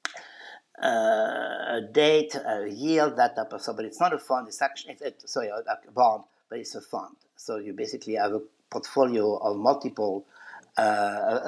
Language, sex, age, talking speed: English, male, 50-69, 185 wpm